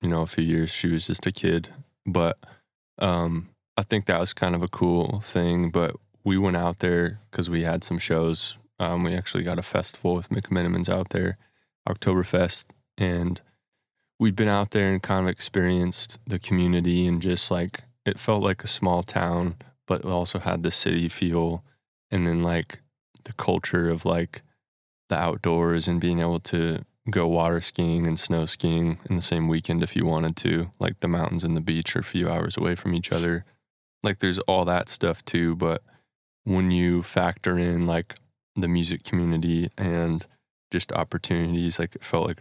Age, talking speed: 20-39, 190 wpm